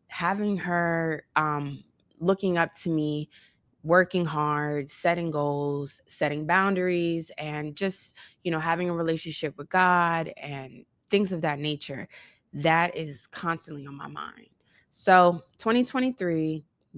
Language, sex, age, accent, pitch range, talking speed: English, female, 20-39, American, 145-180 Hz, 125 wpm